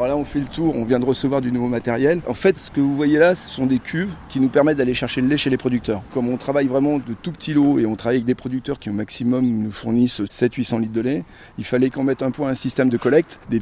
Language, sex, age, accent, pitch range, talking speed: French, male, 30-49, French, 125-150 Hz, 305 wpm